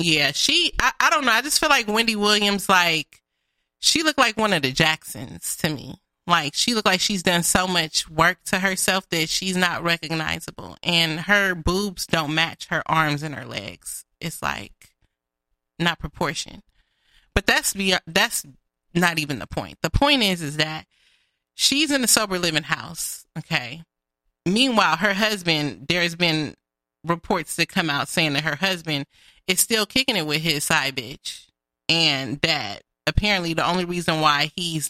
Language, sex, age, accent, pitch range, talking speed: English, female, 30-49, American, 145-190 Hz, 170 wpm